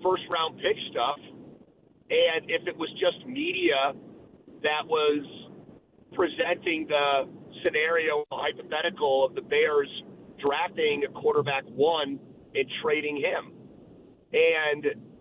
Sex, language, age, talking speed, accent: male, English, 40-59, 105 wpm, American